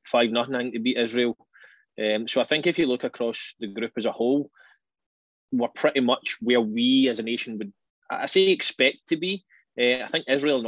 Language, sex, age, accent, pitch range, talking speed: English, male, 20-39, British, 110-130 Hz, 210 wpm